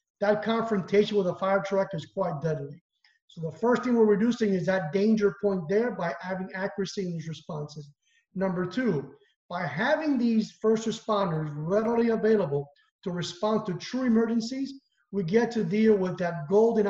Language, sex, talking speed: English, male, 165 wpm